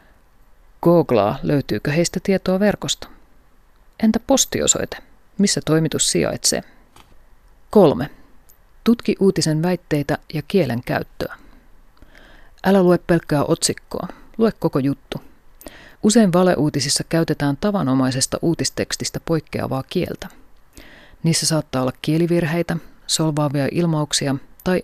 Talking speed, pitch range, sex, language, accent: 90 wpm, 150-195 Hz, female, Finnish, native